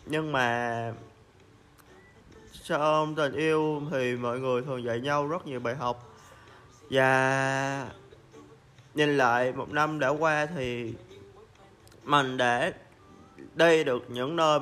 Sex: male